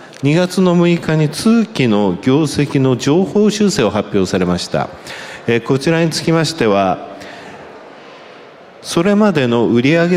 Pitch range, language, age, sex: 105-155 Hz, Japanese, 50-69, male